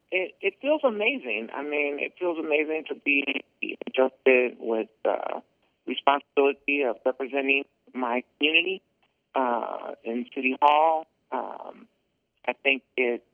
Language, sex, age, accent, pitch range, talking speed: English, male, 50-69, American, 120-145 Hz, 120 wpm